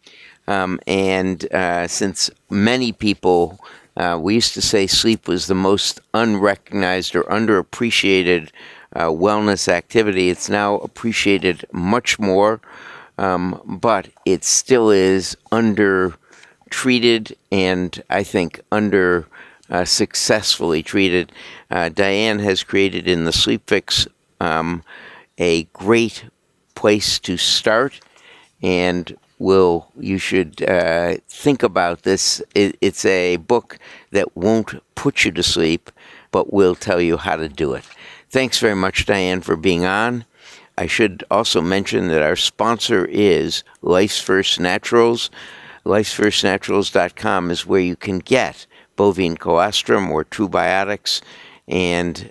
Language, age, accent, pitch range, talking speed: English, 60-79, American, 90-105 Hz, 125 wpm